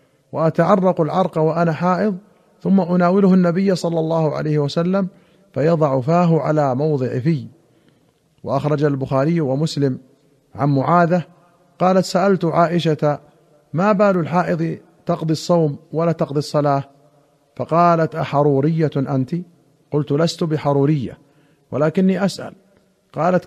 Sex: male